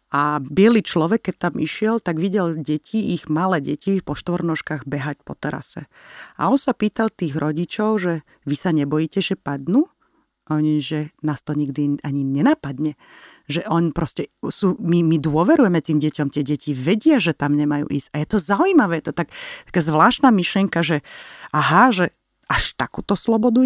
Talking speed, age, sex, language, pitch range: 165 wpm, 30-49, female, Slovak, 155-215 Hz